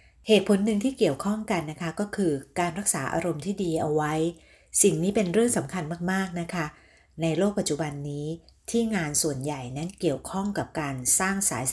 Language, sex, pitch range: Thai, female, 150-190 Hz